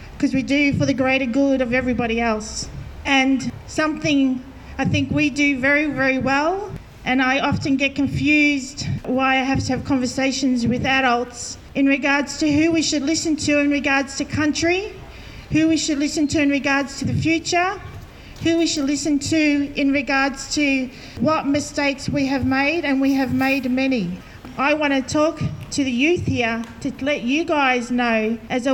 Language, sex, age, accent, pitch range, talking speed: English, female, 40-59, Australian, 260-290 Hz, 180 wpm